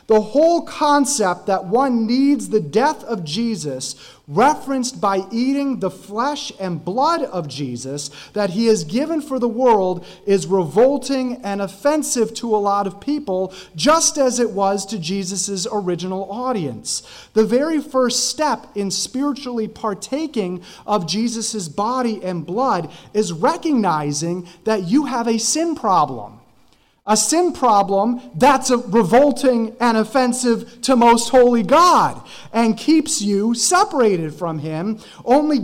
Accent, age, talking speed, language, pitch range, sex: American, 30-49, 135 wpm, English, 200-260 Hz, male